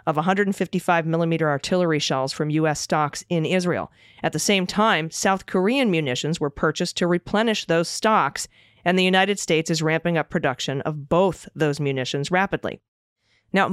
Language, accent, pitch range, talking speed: English, American, 155-200 Hz, 155 wpm